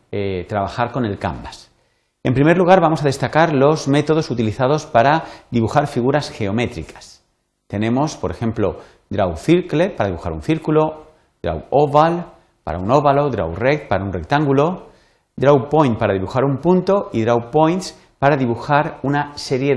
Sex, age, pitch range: male, 40-59, 100-150 Hz